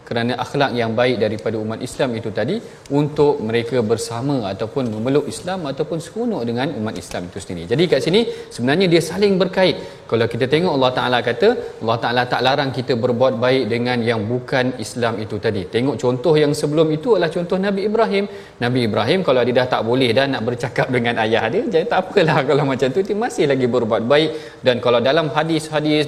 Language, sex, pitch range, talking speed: Malayalam, male, 120-155 Hz, 195 wpm